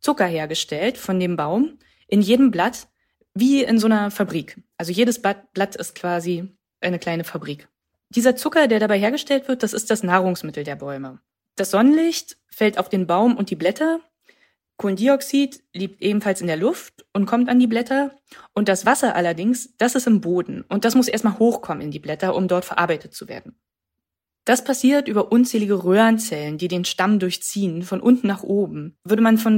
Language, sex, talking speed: German, female, 185 wpm